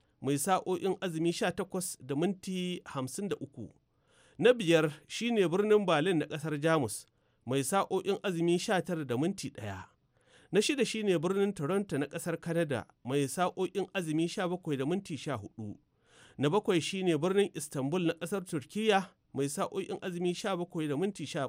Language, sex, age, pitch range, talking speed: English, male, 40-59, 140-190 Hz, 140 wpm